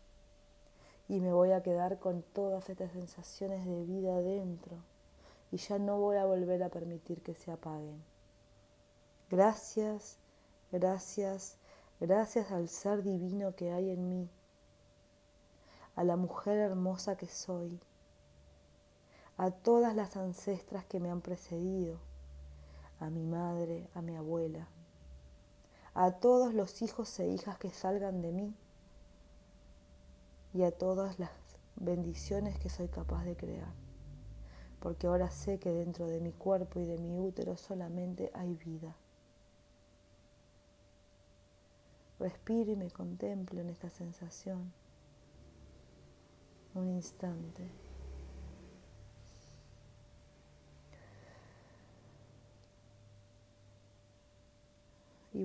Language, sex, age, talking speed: Spanish, female, 30-49, 105 wpm